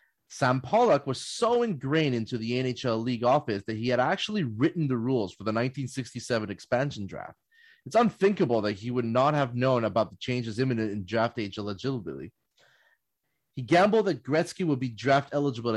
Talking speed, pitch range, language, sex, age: 175 wpm, 115-150 Hz, English, male, 30-49